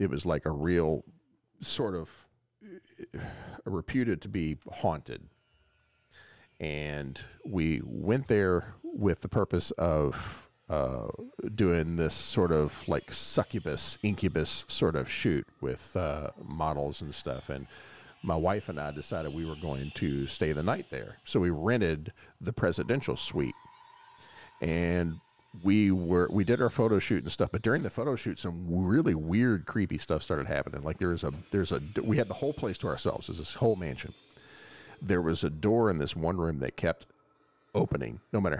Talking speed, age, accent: 165 wpm, 40-59, American